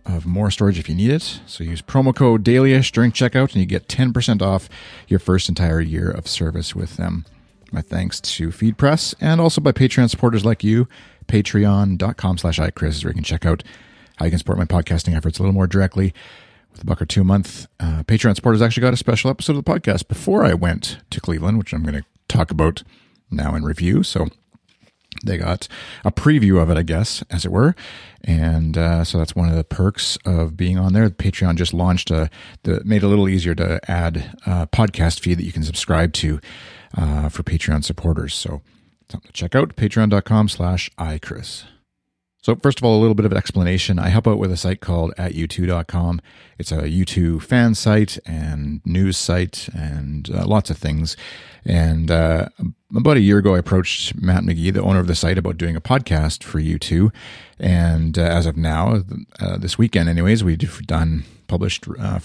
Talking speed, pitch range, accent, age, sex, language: 205 wpm, 85-105 Hz, American, 40-59, male, English